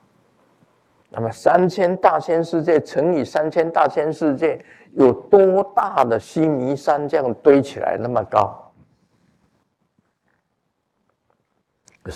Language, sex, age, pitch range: Chinese, male, 50-69, 115-165 Hz